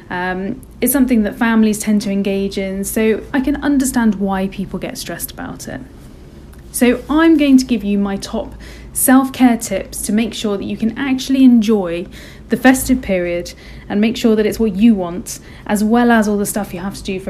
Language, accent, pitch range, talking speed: English, British, 195-255 Hz, 205 wpm